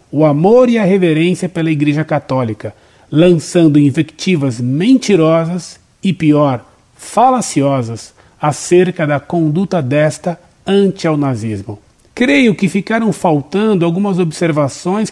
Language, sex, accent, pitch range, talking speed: Portuguese, male, Brazilian, 145-195 Hz, 105 wpm